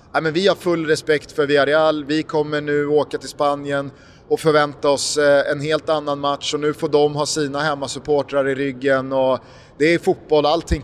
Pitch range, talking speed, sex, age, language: 140-180 Hz, 195 wpm, male, 30-49, Swedish